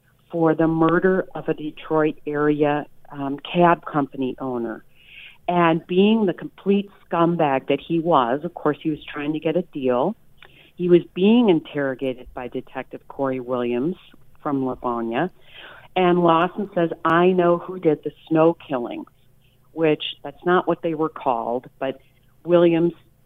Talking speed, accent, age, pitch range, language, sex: 145 wpm, American, 50-69, 135-165 Hz, English, female